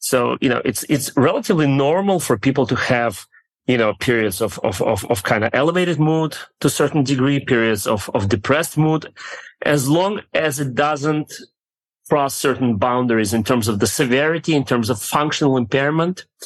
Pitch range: 115-145 Hz